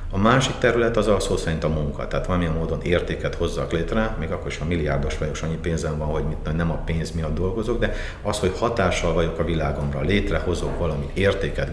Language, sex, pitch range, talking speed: Hungarian, male, 75-95 Hz, 215 wpm